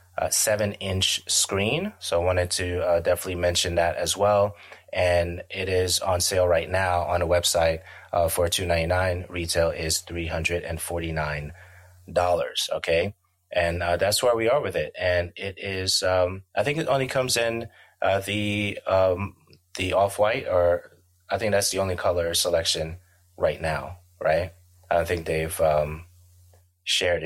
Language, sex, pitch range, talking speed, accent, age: English, male, 85-95 Hz, 165 wpm, American, 30-49